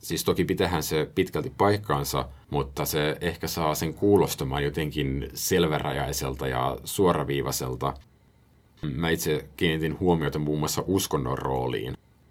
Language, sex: Finnish, male